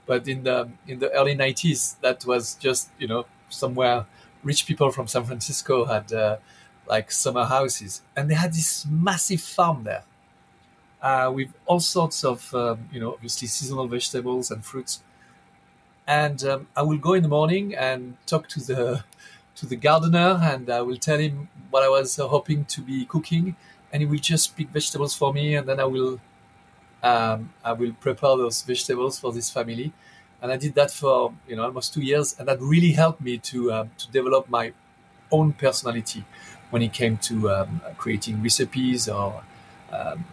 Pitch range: 115-150 Hz